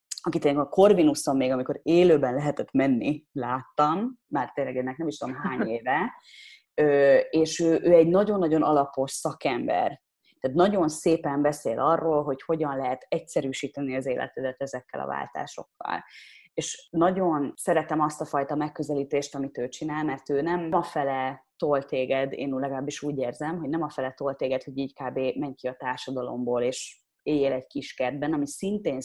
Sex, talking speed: female, 165 wpm